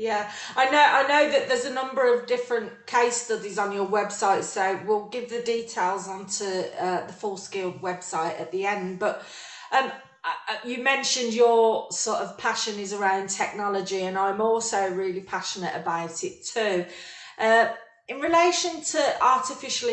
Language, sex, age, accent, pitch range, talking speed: English, female, 40-59, British, 195-240 Hz, 165 wpm